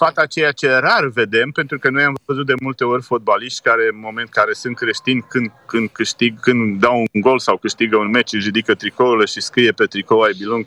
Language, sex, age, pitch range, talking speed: Romanian, male, 30-49, 115-140 Hz, 230 wpm